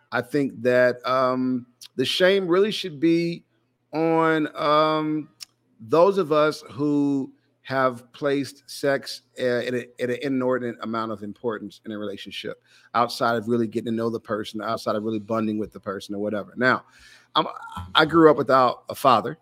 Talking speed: 165 wpm